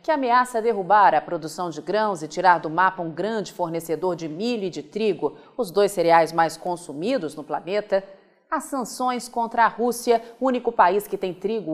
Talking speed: 190 wpm